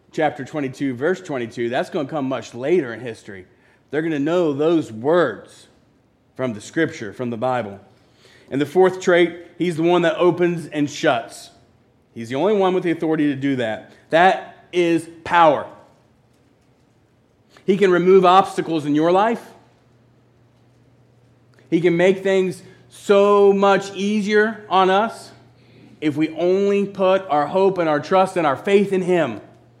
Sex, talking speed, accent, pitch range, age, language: male, 155 wpm, American, 130-200 Hz, 40-59, English